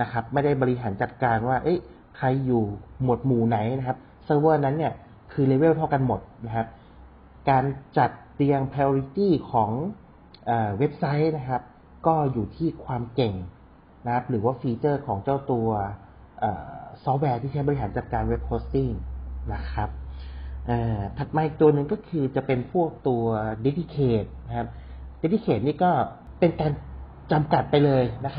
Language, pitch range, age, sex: Thai, 115-145 Hz, 30-49, male